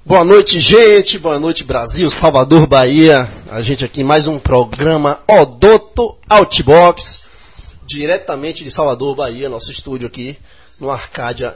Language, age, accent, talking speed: Portuguese, 20-39, Brazilian, 130 wpm